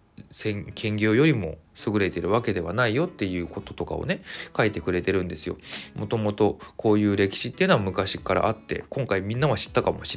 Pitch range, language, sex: 90-115 Hz, Japanese, male